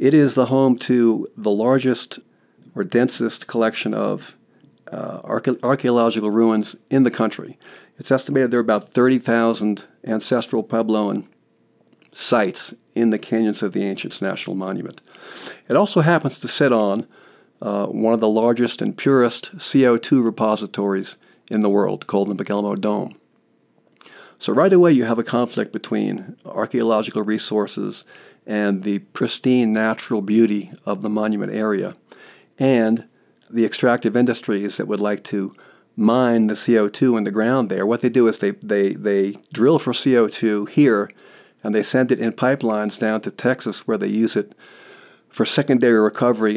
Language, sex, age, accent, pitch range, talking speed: English, male, 50-69, American, 105-125 Hz, 150 wpm